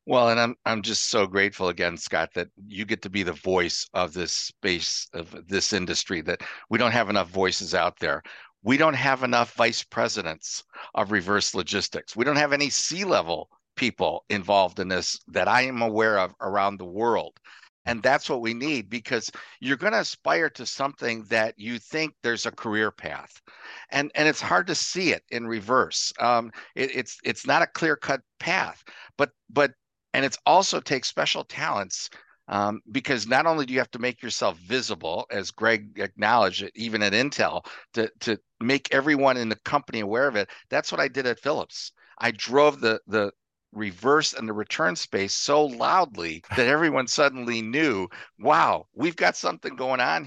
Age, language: 50-69, English